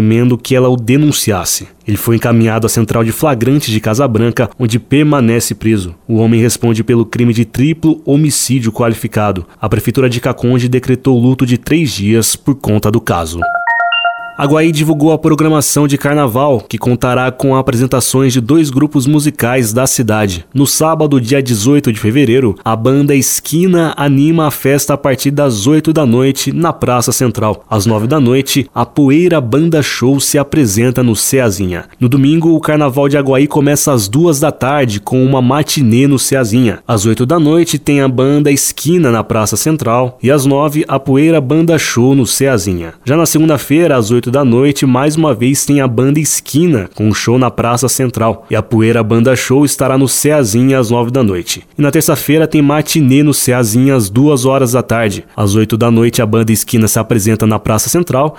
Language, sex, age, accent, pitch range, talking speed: Portuguese, male, 20-39, Brazilian, 115-145 Hz, 185 wpm